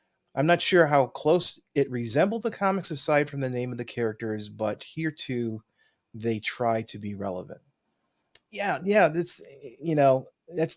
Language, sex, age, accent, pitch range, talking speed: English, male, 30-49, American, 110-140 Hz, 165 wpm